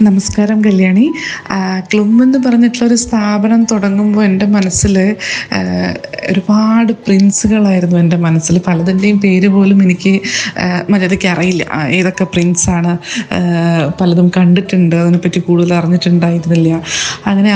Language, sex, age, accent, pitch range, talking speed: Malayalam, female, 20-39, native, 185-225 Hz, 85 wpm